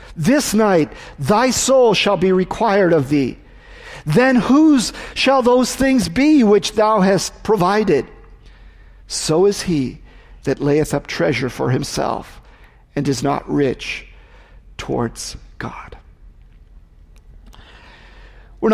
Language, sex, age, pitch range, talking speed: English, male, 50-69, 140-210 Hz, 110 wpm